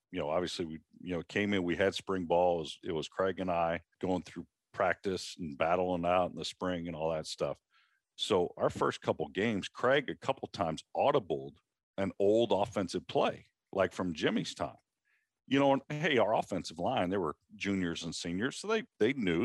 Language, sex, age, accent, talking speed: English, male, 50-69, American, 205 wpm